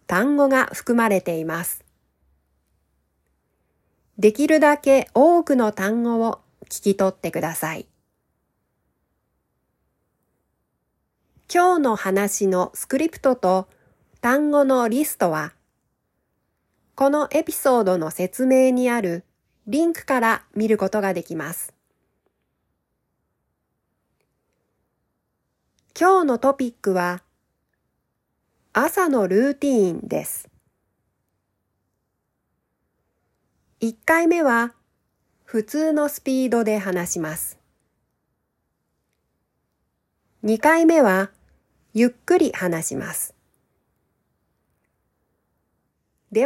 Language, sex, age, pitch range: Japanese, female, 40-59, 185-280 Hz